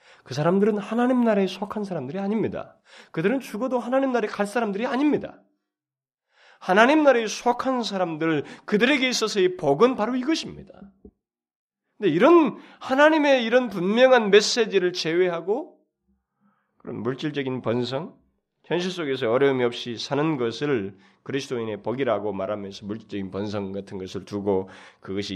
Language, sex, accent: Korean, male, native